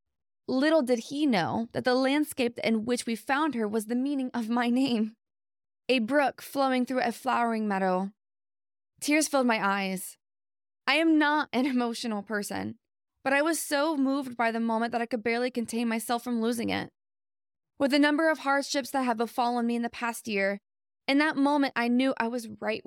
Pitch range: 200-270 Hz